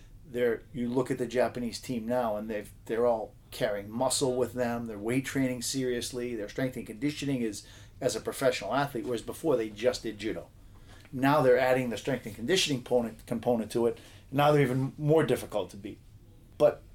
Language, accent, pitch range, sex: English, American, 105-125 Hz, male